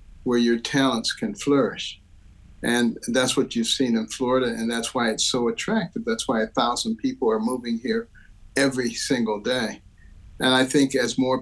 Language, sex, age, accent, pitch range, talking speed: English, male, 50-69, American, 110-135 Hz, 180 wpm